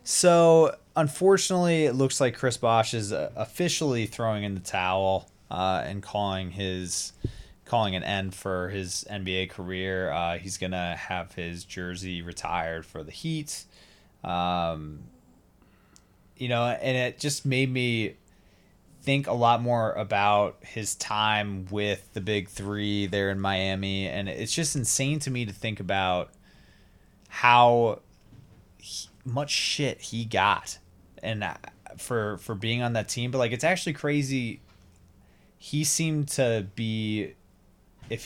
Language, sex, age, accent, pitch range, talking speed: English, male, 20-39, American, 95-120 Hz, 135 wpm